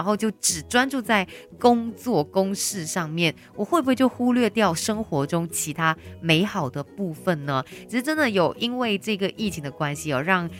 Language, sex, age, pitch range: Chinese, female, 20-39, 160-220 Hz